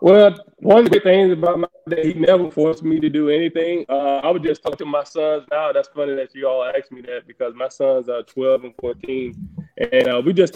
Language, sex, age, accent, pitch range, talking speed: English, male, 20-39, American, 125-160 Hz, 245 wpm